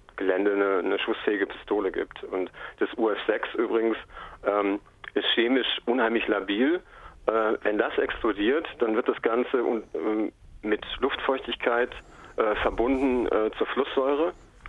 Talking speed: 120 wpm